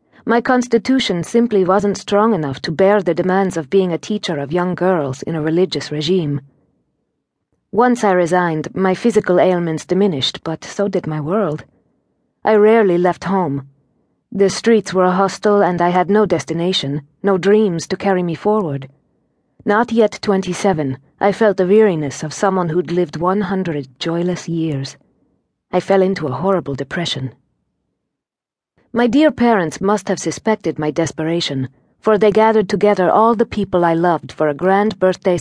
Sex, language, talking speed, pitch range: female, English, 160 wpm, 165-205 Hz